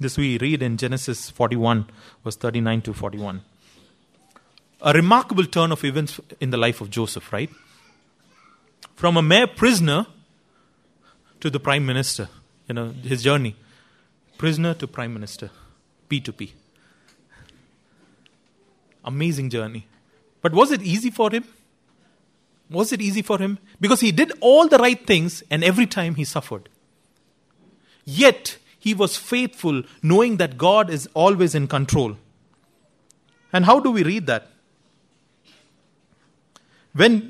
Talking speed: 135 wpm